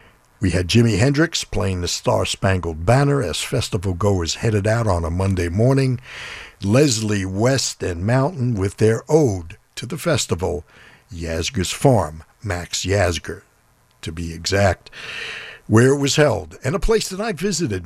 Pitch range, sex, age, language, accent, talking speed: 95-135 Hz, male, 60-79, English, American, 150 wpm